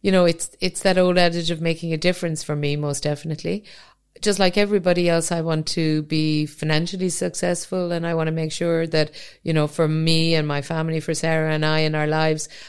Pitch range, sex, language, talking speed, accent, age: 150-165 Hz, female, English, 220 wpm, Irish, 50-69